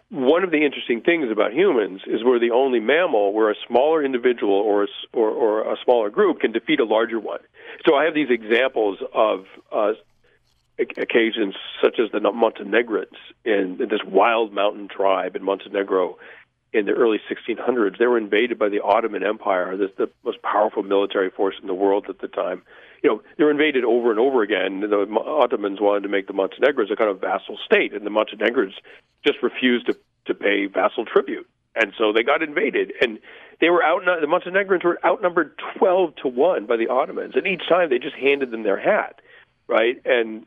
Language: English